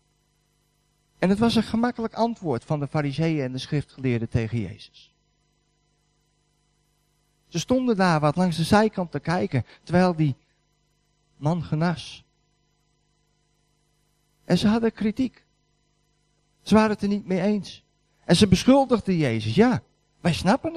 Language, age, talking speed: Dutch, 50-69, 130 wpm